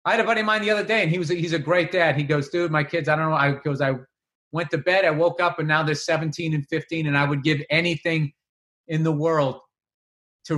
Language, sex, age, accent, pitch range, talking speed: English, male, 40-59, American, 150-185 Hz, 280 wpm